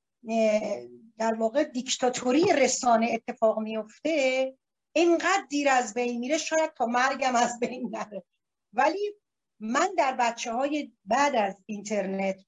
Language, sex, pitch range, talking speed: Persian, female, 190-255 Hz, 120 wpm